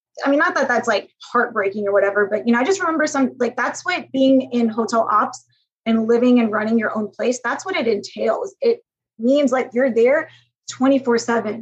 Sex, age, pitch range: female, 20-39, 220-265 Hz